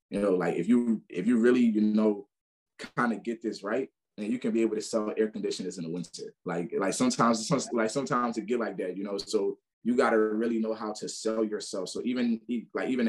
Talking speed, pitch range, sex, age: 235 wpm, 100-120 Hz, male, 20-39